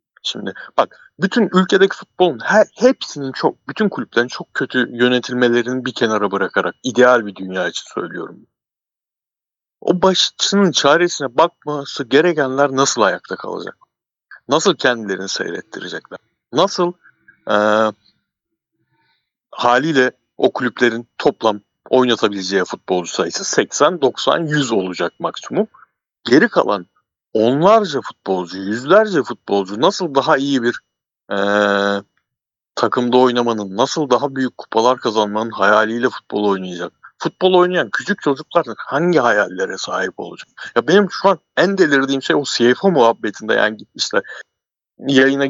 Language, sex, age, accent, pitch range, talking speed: Turkish, male, 60-79, native, 110-170 Hz, 115 wpm